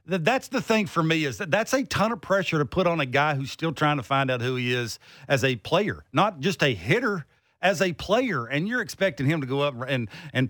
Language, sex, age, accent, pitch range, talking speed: English, male, 50-69, American, 145-210 Hz, 255 wpm